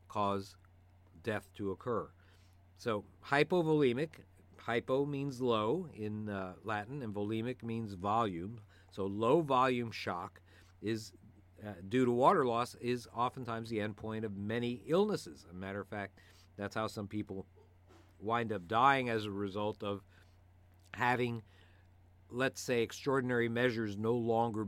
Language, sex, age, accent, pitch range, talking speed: English, male, 50-69, American, 95-115 Hz, 135 wpm